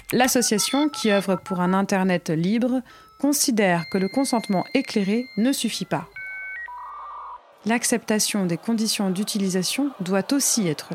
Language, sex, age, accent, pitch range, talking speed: French, female, 30-49, French, 190-245 Hz, 120 wpm